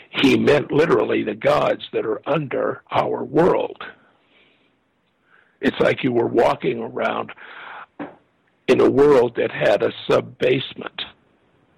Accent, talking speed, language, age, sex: American, 115 wpm, English, 60-79, male